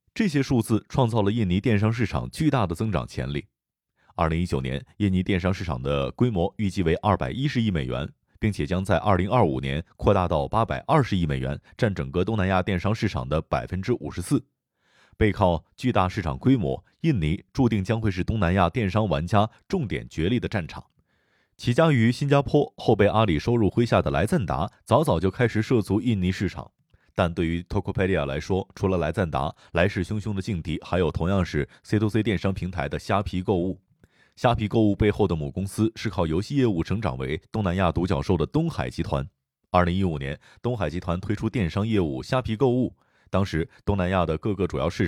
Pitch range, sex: 85-110 Hz, male